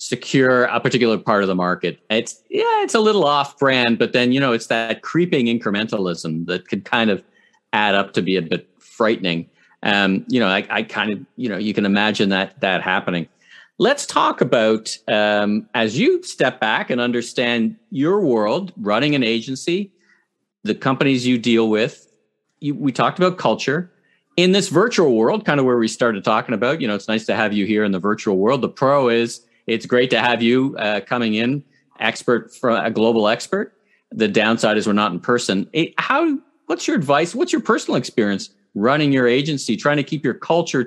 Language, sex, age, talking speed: English, male, 40-59, 200 wpm